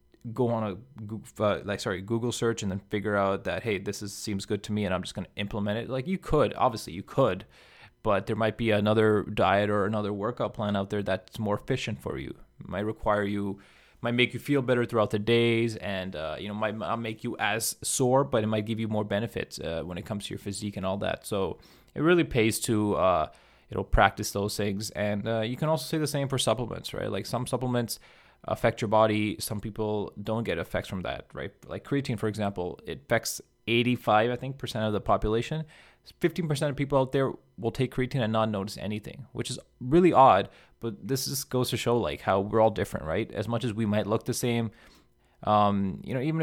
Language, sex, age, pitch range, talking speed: English, male, 20-39, 105-125 Hz, 230 wpm